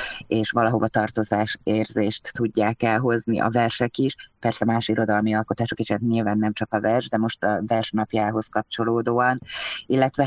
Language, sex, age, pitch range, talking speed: Hungarian, female, 30-49, 105-115 Hz, 145 wpm